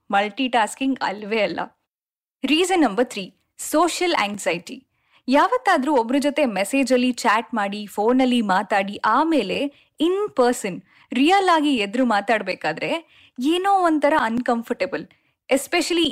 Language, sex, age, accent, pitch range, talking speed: Kannada, female, 10-29, native, 220-285 Hz, 100 wpm